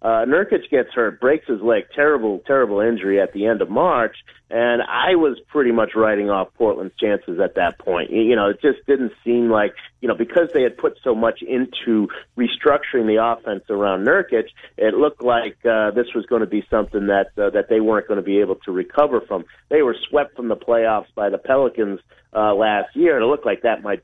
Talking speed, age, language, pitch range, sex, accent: 220 wpm, 40-59, English, 105-125 Hz, male, American